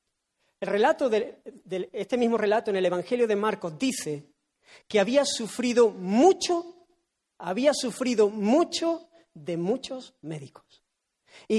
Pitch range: 210-295 Hz